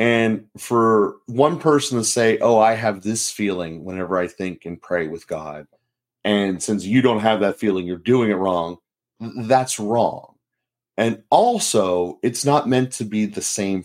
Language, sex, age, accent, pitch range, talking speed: English, male, 30-49, American, 105-130 Hz, 180 wpm